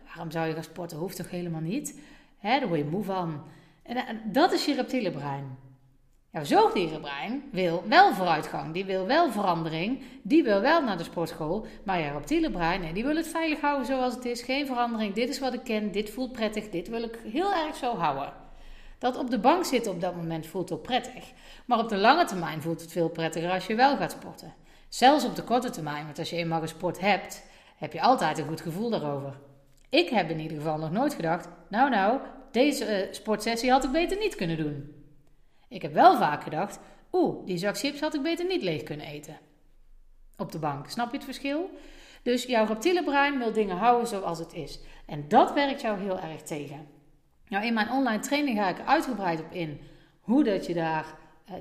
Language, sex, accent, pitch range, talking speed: Dutch, female, Dutch, 165-260 Hz, 215 wpm